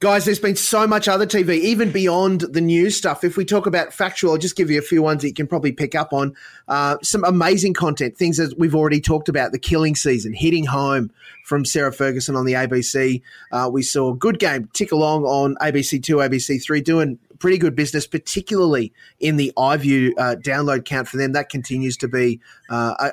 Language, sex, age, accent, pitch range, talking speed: English, male, 20-39, Australian, 135-170 Hz, 215 wpm